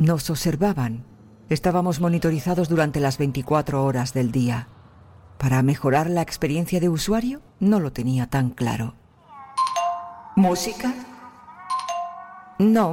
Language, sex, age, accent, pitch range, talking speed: Spanish, female, 50-69, Spanish, 130-185 Hz, 105 wpm